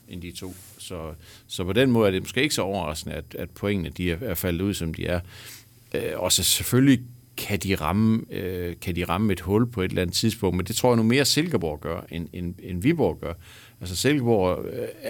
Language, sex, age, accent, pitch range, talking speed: Danish, male, 60-79, native, 90-120 Hz, 230 wpm